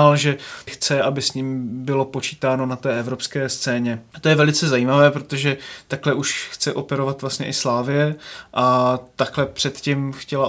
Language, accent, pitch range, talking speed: Czech, native, 130-145 Hz, 155 wpm